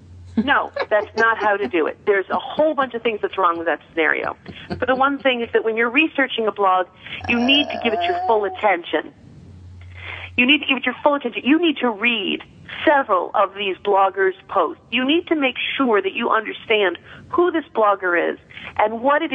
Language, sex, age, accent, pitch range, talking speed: English, female, 40-59, American, 200-265 Hz, 215 wpm